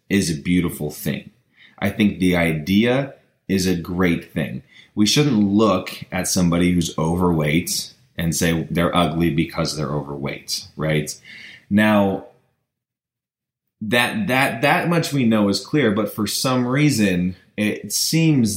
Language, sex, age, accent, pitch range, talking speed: English, male, 20-39, American, 85-110 Hz, 135 wpm